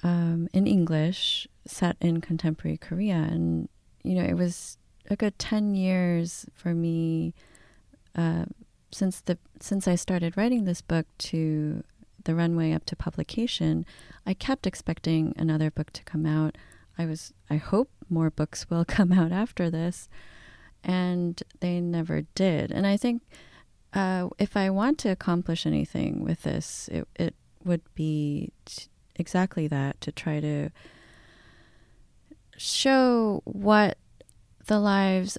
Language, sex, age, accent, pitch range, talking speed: English, female, 30-49, American, 155-190 Hz, 140 wpm